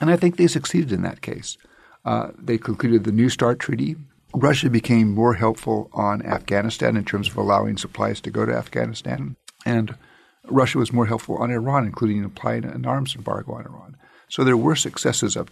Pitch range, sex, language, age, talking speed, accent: 105-120 Hz, male, English, 50-69, 190 wpm, American